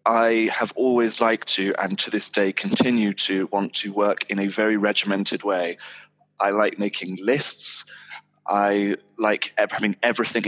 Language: English